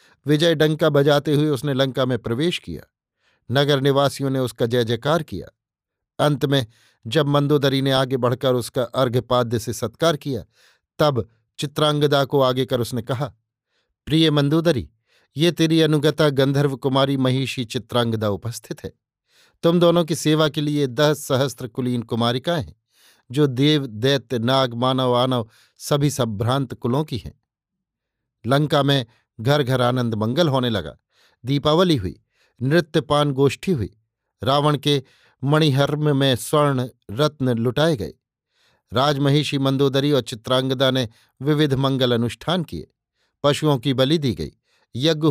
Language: Hindi